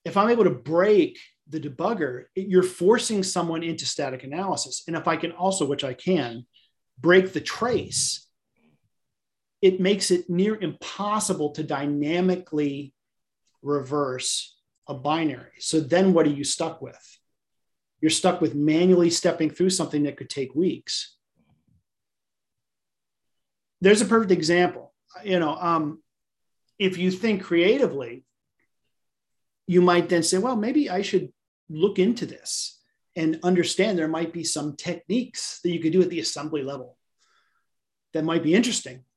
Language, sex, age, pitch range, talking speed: English, male, 40-59, 145-185 Hz, 145 wpm